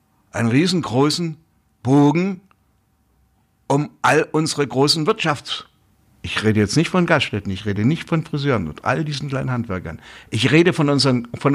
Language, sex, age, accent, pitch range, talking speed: German, male, 60-79, German, 115-155 Hz, 150 wpm